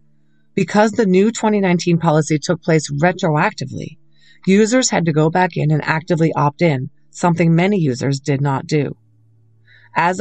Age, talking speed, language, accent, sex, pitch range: 30-49, 145 wpm, English, American, female, 140-175 Hz